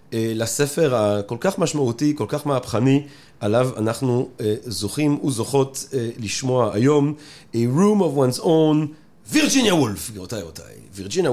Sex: male